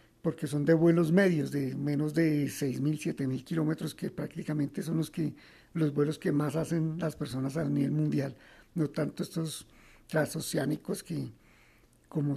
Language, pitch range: Spanish, 145-165 Hz